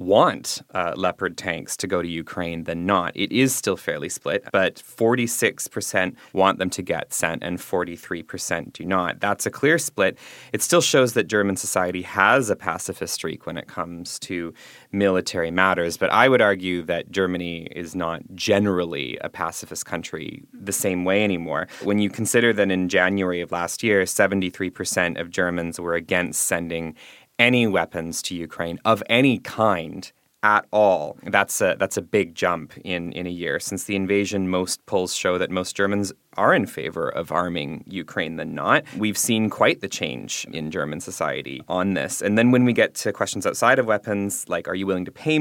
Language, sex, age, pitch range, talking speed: English, male, 20-39, 85-105 Hz, 185 wpm